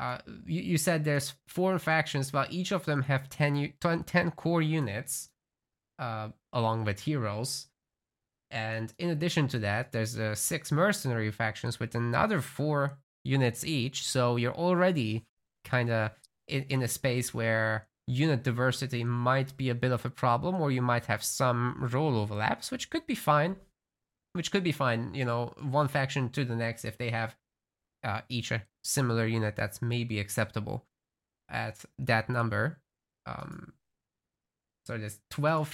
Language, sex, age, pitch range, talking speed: English, male, 20-39, 115-145 Hz, 160 wpm